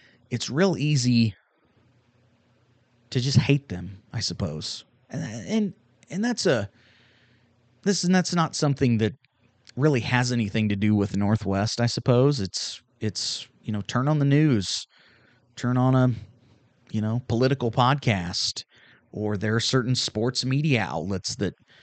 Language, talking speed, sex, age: English, 145 wpm, male, 30-49